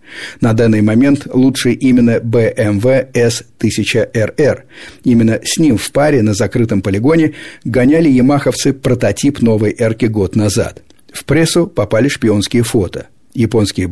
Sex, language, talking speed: male, Russian, 120 wpm